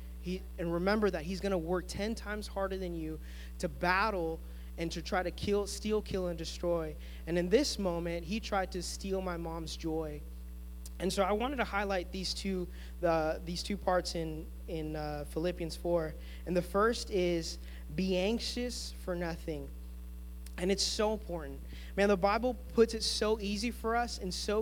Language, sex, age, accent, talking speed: English, male, 20-39, American, 185 wpm